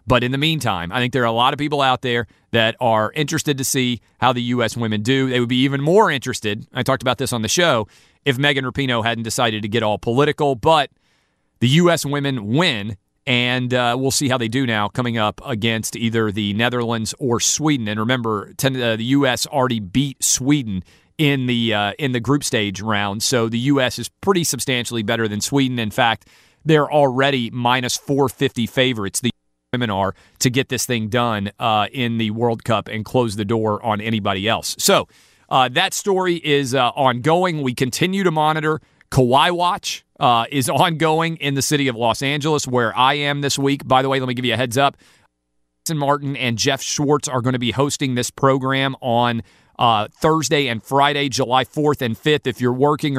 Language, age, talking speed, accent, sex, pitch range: English, 40-59, 200 wpm, American, male, 115-140 Hz